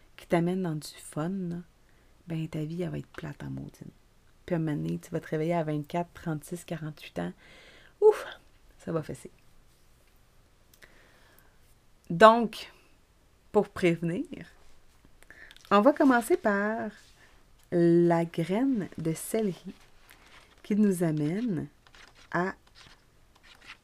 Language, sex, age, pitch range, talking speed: French, female, 30-49, 155-185 Hz, 120 wpm